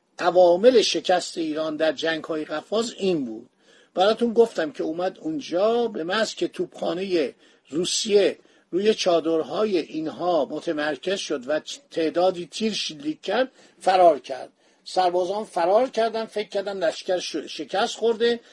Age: 50-69